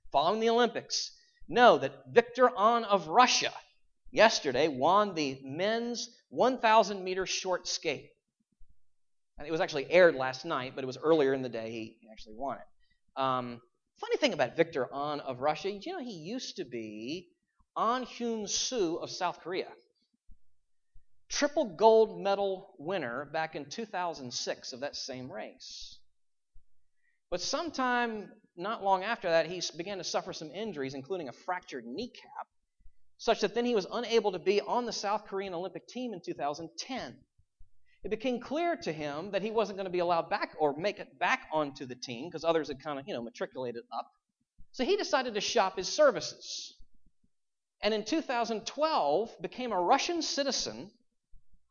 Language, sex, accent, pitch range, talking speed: English, male, American, 155-235 Hz, 160 wpm